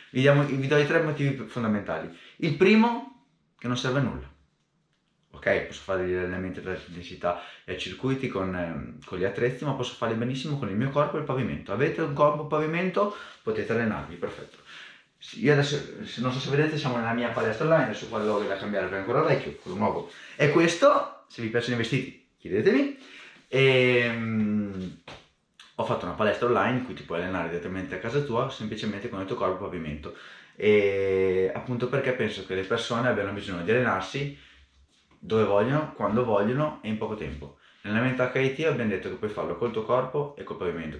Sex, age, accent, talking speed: male, 30-49, native, 190 wpm